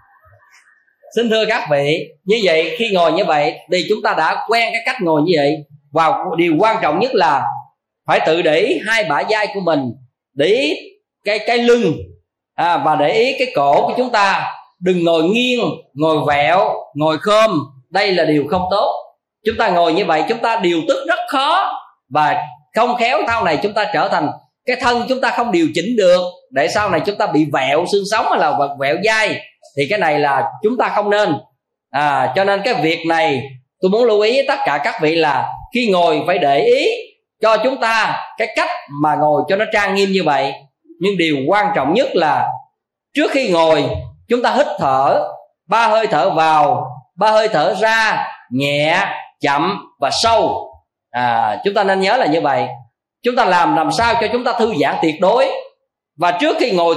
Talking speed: 200 wpm